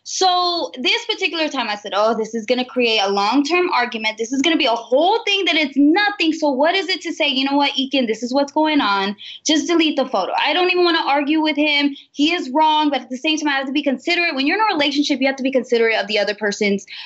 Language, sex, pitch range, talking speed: English, female, 235-330 Hz, 280 wpm